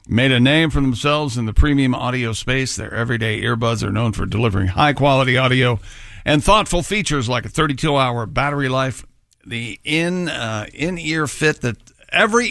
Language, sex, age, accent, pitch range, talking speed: English, male, 50-69, American, 115-155 Hz, 160 wpm